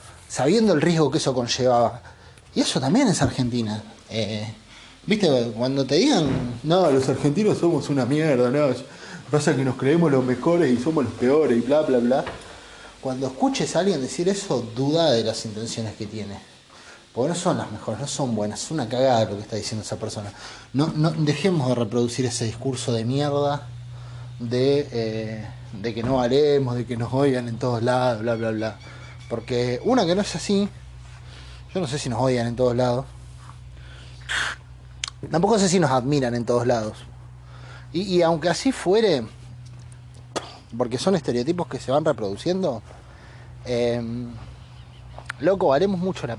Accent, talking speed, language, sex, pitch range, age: Argentinian, 170 wpm, Spanish, male, 120-150 Hz, 20-39